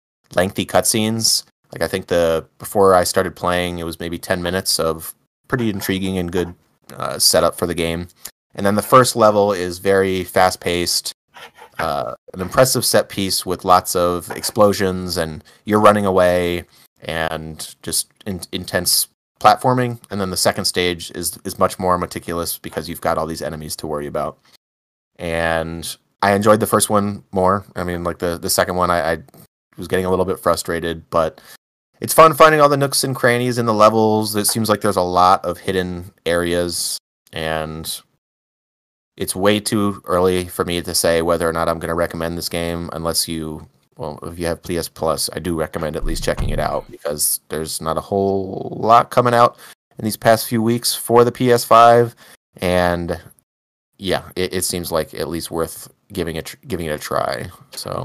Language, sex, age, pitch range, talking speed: English, male, 30-49, 85-105 Hz, 185 wpm